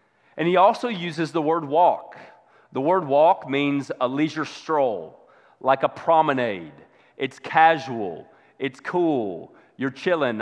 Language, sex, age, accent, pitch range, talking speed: English, male, 30-49, American, 140-165 Hz, 130 wpm